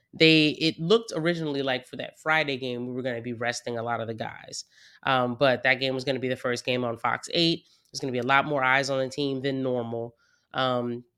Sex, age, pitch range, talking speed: female, 20-39, 125-145 Hz, 260 wpm